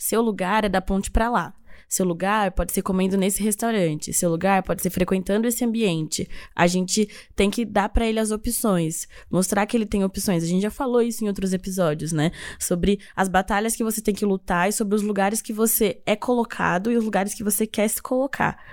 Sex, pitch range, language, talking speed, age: female, 190-235 Hz, Portuguese, 220 wpm, 10-29